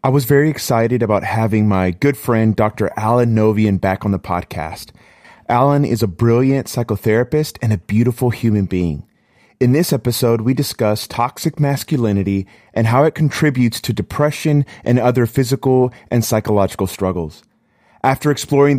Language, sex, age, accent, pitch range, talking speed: English, male, 30-49, American, 110-140 Hz, 150 wpm